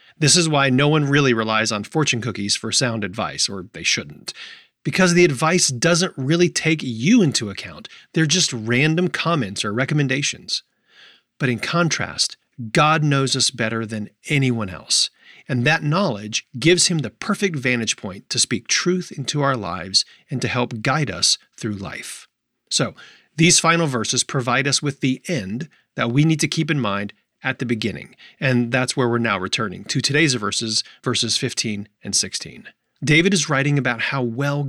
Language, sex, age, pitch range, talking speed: English, male, 40-59, 115-155 Hz, 175 wpm